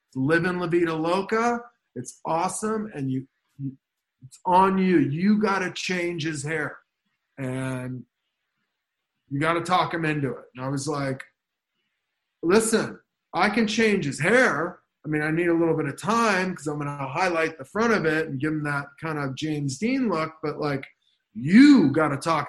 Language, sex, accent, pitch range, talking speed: English, male, American, 150-195 Hz, 185 wpm